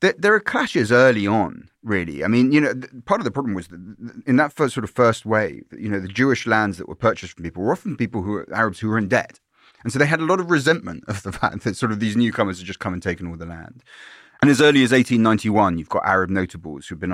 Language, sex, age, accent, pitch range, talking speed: English, male, 30-49, British, 95-140 Hz, 265 wpm